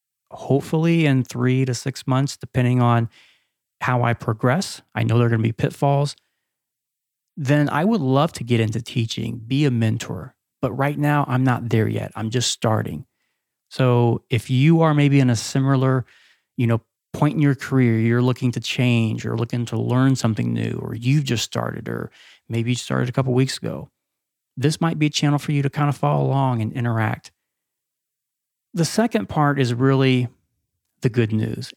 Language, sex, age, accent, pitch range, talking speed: English, male, 30-49, American, 115-140 Hz, 185 wpm